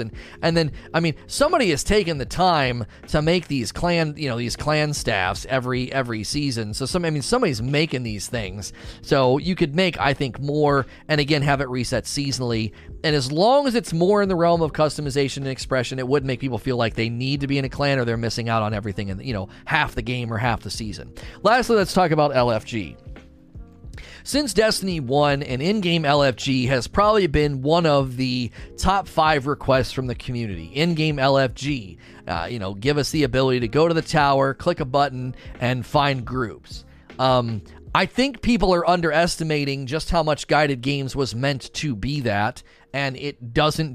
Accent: American